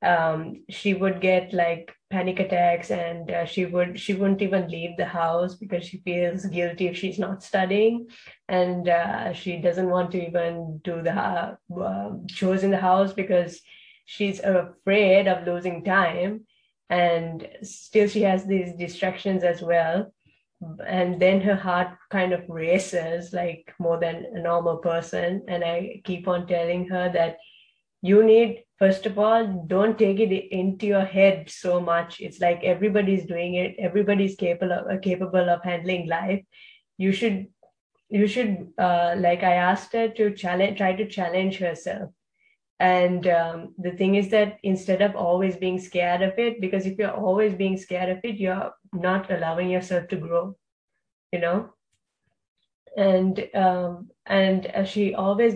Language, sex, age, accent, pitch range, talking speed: English, female, 20-39, Indian, 175-195 Hz, 160 wpm